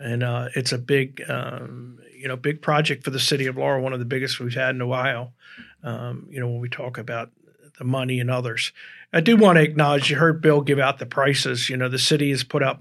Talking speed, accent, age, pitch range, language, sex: 255 wpm, American, 50-69, 125-145 Hz, English, male